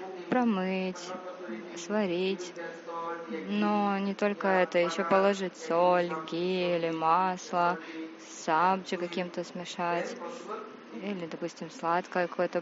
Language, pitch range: Russian, 175-200 Hz